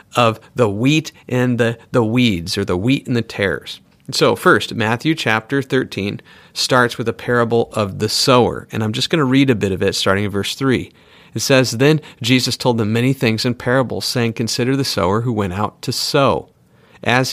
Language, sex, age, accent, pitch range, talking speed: English, male, 40-59, American, 105-140 Hz, 210 wpm